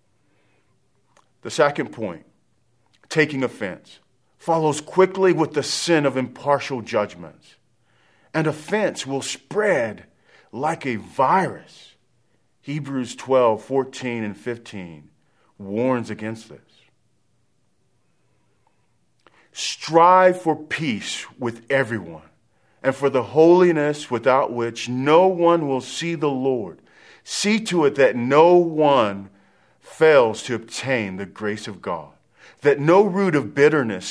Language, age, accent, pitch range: English, 40-59, American, 110-155 Hz